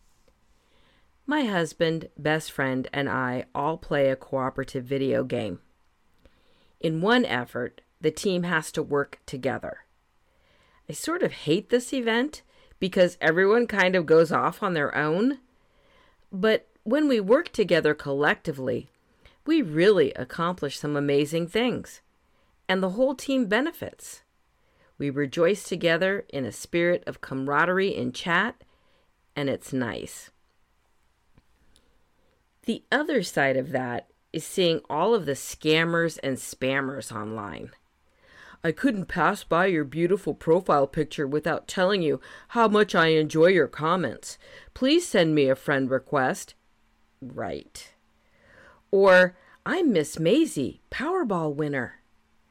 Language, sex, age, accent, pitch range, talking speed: English, female, 40-59, American, 140-215 Hz, 125 wpm